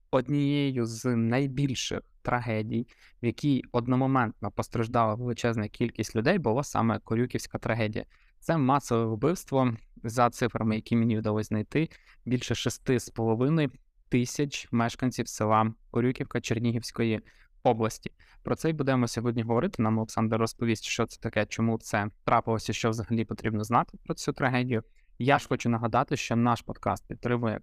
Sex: male